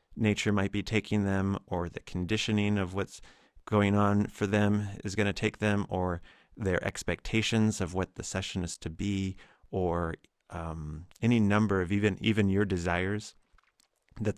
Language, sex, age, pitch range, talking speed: English, male, 30-49, 90-105 Hz, 165 wpm